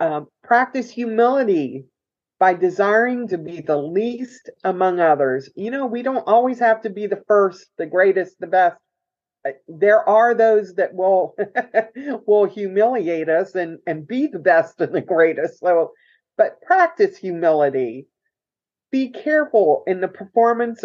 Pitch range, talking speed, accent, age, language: 180-240 Hz, 145 wpm, American, 40-59, English